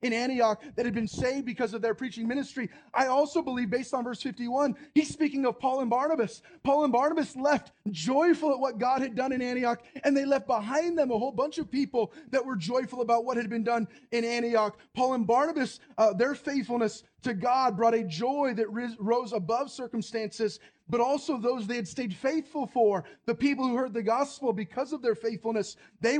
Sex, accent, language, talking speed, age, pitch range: male, American, English, 205 wpm, 30-49, 230-270 Hz